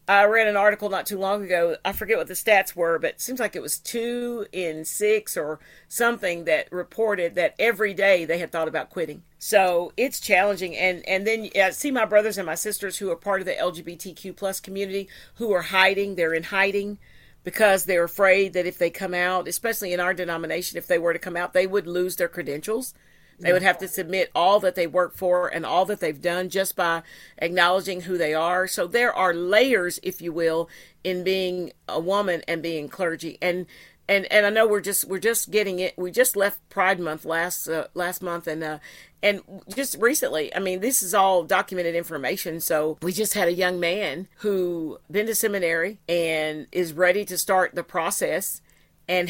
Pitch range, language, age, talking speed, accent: 170-200 Hz, English, 50-69, 210 wpm, American